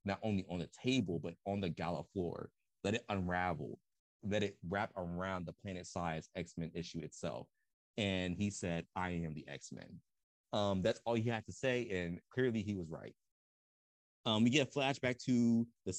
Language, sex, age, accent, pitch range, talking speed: English, male, 30-49, American, 90-115 Hz, 175 wpm